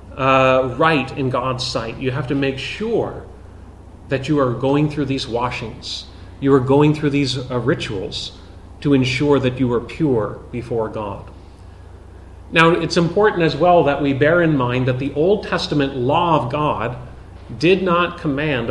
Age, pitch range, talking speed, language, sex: 30-49, 105-150 Hz, 165 wpm, English, male